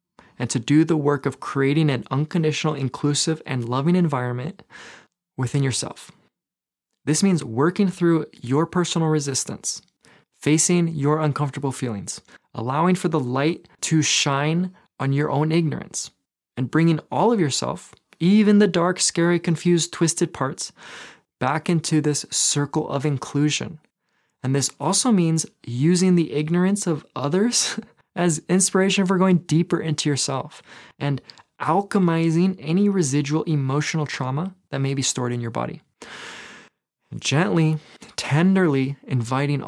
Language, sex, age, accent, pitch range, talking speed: English, male, 20-39, American, 135-170 Hz, 130 wpm